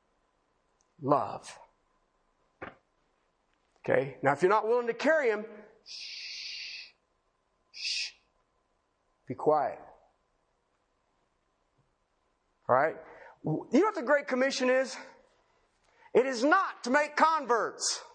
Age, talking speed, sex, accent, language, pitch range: 50-69, 95 wpm, male, American, English, 225-365 Hz